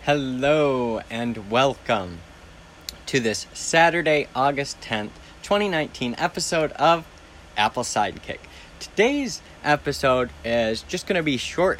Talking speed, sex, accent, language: 105 wpm, male, American, English